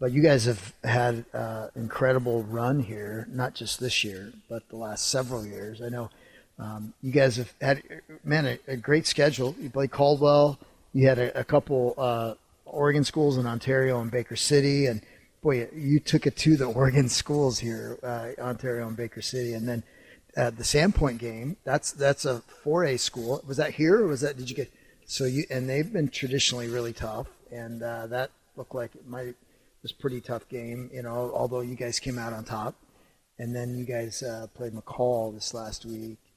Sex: male